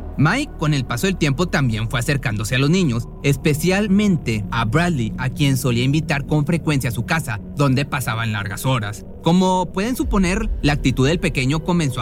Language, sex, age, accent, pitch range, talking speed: Spanish, male, 30-49, Mexican, 120-160 Hz, 180 wpm